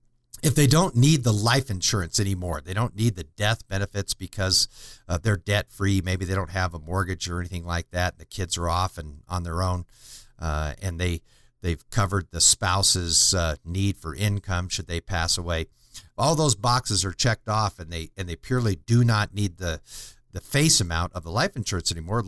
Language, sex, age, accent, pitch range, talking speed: English, male, 50-69, American, 90-115 Hz, 200 wpm